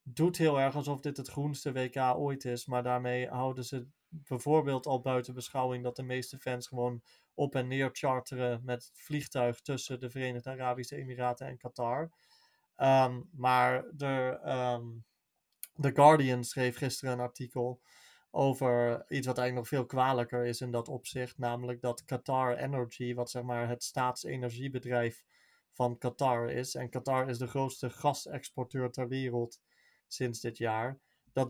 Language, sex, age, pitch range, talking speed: Dutch, male, 30-49, 125-140 Hz, 150 wpm